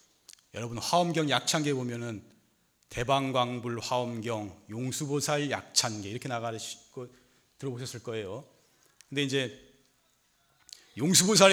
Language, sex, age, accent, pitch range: Korean, male, 30-49, native, 115-160 Hz